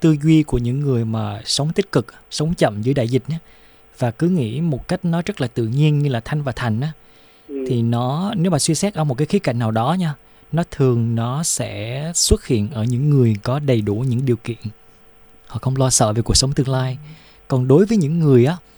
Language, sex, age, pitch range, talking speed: Vietnamese, male, 20-39, 120-160 Hz, 230 wpm